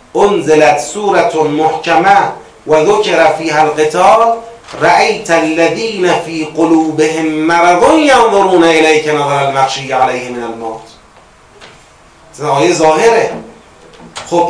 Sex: male